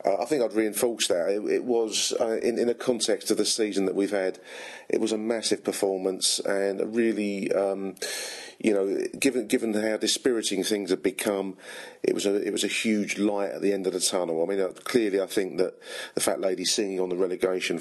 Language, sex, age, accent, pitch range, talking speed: English, male, 40-59, British, 95-130 Hz, 220 wpm